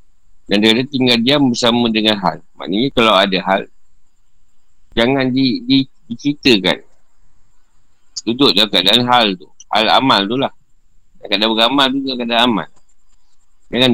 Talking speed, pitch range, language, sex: 125 wpm, 110-150 Hz, Malay, male